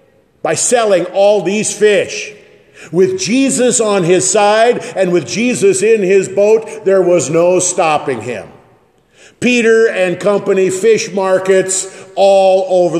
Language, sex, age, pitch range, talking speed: English, male, 50-69, 150-205 Hz, 130 wpm